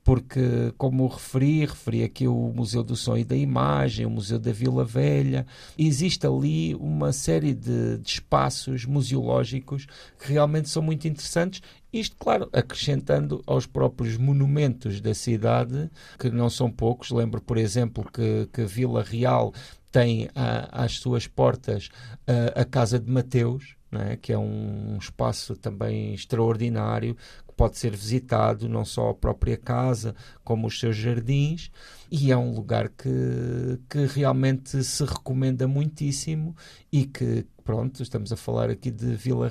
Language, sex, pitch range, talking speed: Portuguese, male, 115-135 Hz, 150 wpm